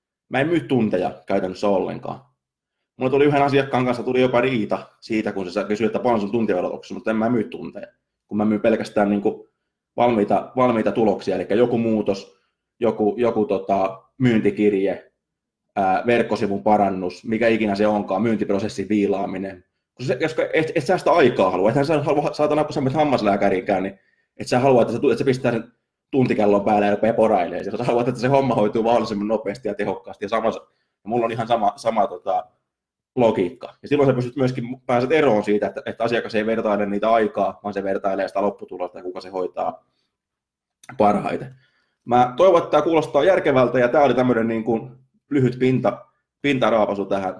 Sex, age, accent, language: male, 20-39, native, Finnish